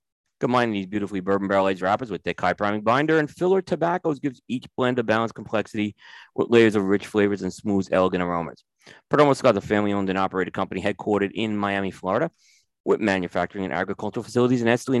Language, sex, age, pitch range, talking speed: English, male, 30-49, 100-130 Hz, 190 wpm